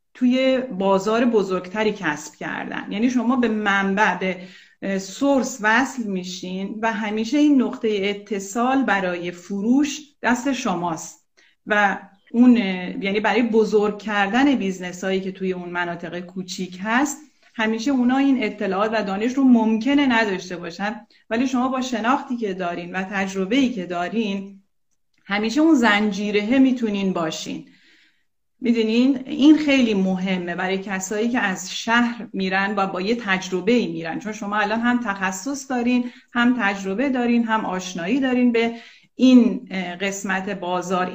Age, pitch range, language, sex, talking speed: 30-49, 190-245 Hz, Persian, female, 135 wpm